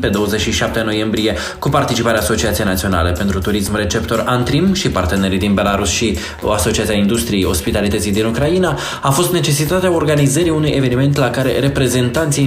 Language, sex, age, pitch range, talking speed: Romanian, male, 20-39, 100-135 Hz, 145 wpm